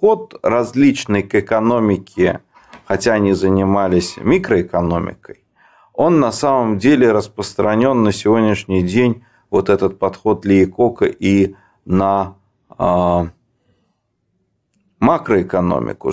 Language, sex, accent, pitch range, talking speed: Russian, male, native, 100-135 Hz, 85 wpm